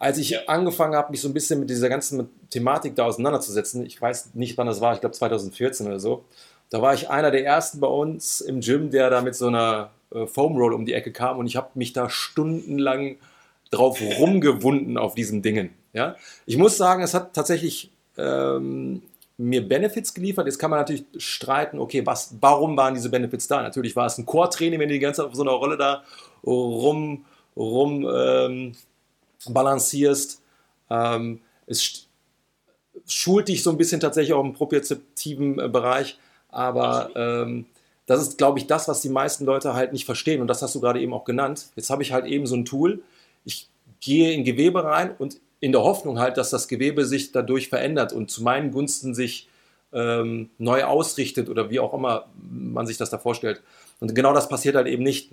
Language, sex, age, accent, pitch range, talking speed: German, male, 40-59, German, 120-145 Hz, 195 wpm